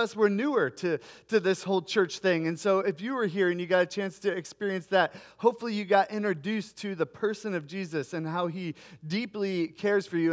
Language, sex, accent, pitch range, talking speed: English, male, American, 185-220 Hz, 225 wpm